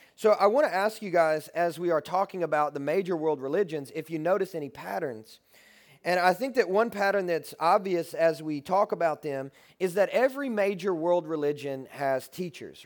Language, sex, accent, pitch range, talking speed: English, male, American, 150-195 Hz, 195 wpm